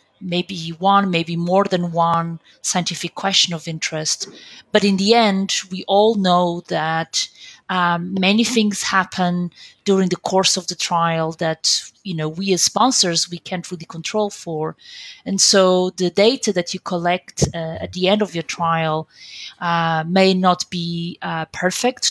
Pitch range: 165-195 Hz